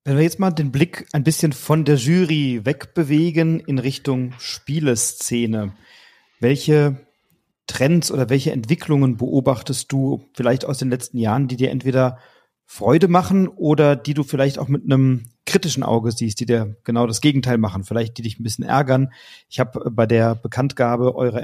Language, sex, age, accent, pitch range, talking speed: German, male, 40-59, German, 120-145 Hz, 170 wpm